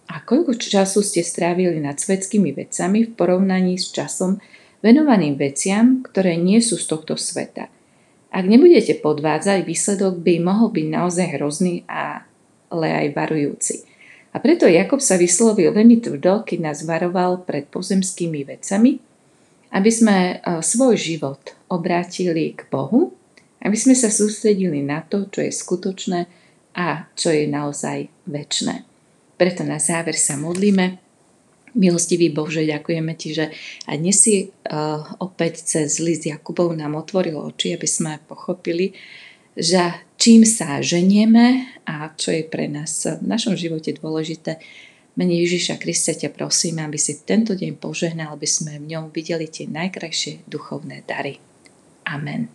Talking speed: 140 wpm